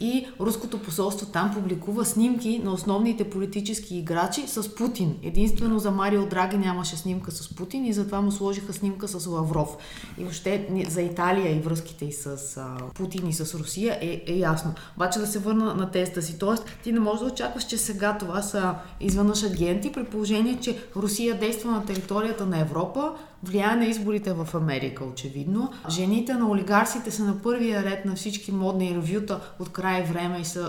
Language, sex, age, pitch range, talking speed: Bulgarian, female, 20-39, 165-215 Hz, 180 wpm